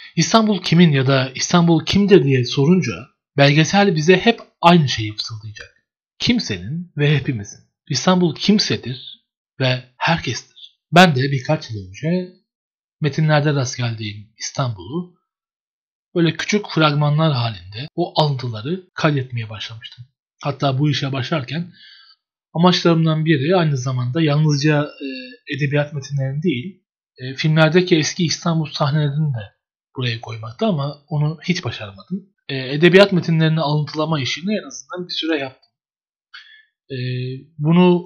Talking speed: 110 wpm